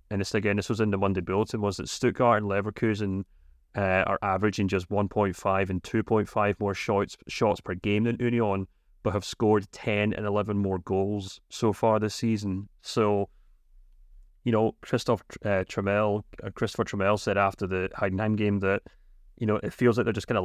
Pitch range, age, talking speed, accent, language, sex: 95-110 Hz, 30-49, 190 wpm, British, English, male